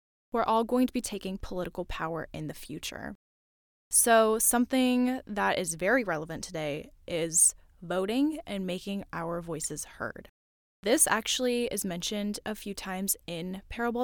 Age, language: 10-29, English